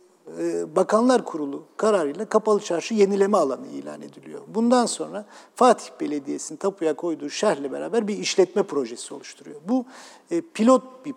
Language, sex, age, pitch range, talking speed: Turkish, male, 50-69, 155-225 Hz, 130 wpm